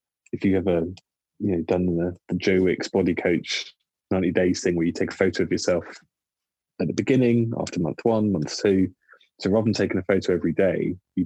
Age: 20-39